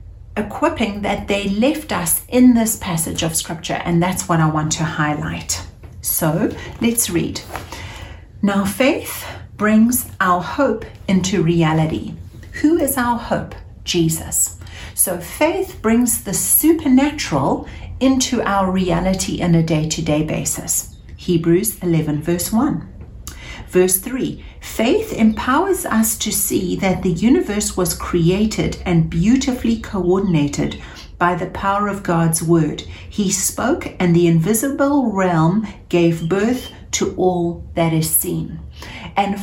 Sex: female